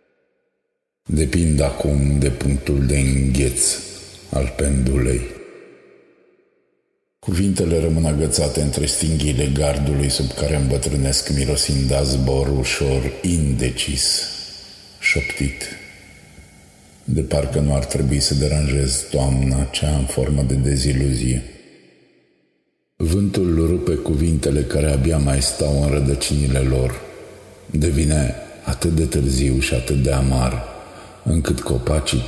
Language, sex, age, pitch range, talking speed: Romanian, male, 50-69, 65-85 Hz, 105 wpm